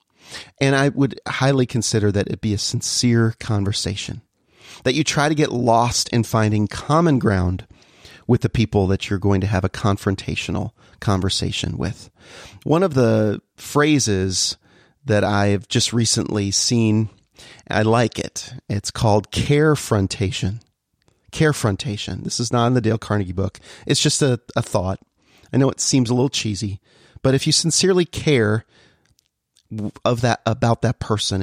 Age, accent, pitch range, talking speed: 40-59, American, 105-140 Hz, 155 wpm